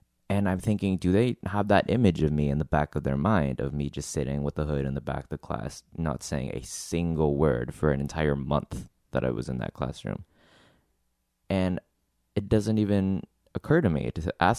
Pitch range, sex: 70-90 Hz, male